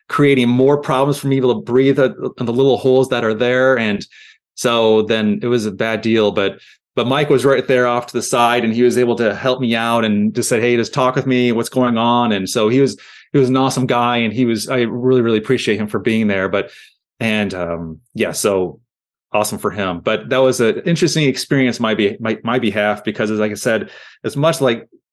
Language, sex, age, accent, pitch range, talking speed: English, male, 30-49, American, 115-140 Hz, 235 wpm